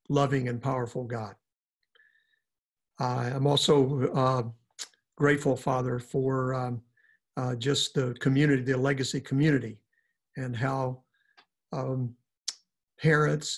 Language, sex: English, male